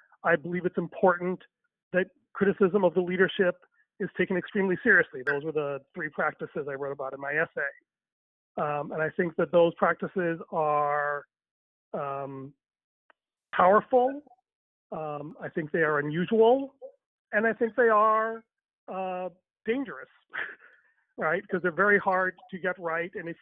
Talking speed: 145 wpm